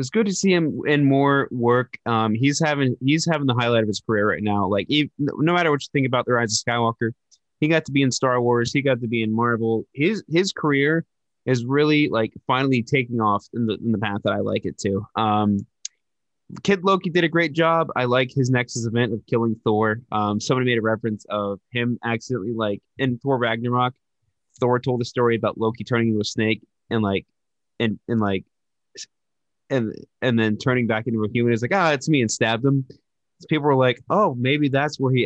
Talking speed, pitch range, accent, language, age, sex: 225 wpm, 115-145 Hz, American, English, 20-39, male